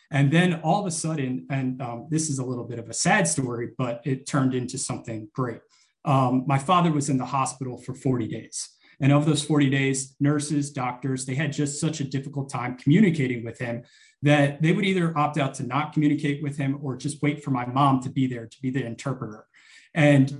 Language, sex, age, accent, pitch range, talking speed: English, male, 30-49, American, 130-150 Hz, 220 wpm